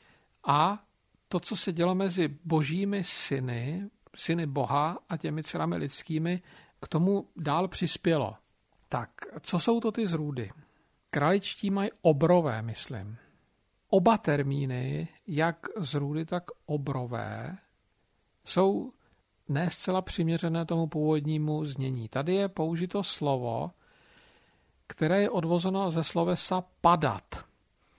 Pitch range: 145-185 Hz